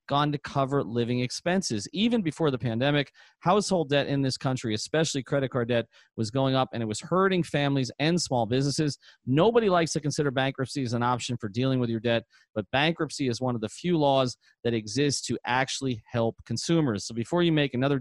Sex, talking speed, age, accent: male, 205 wpm, 40-59, American